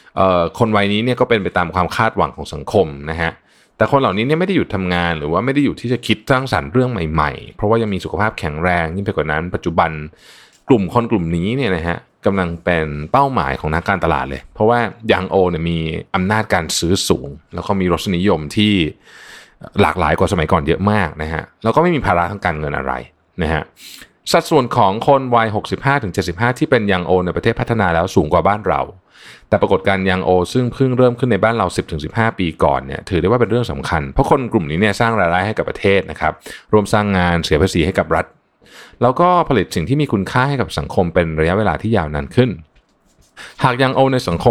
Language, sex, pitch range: Thai, male, 85-115 Hz